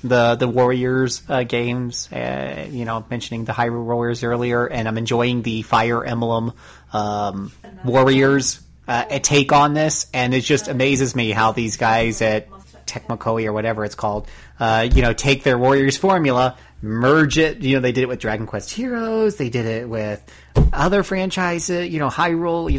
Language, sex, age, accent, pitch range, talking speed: English, male, 30-49, American, 115-140 Hz, 175 wpm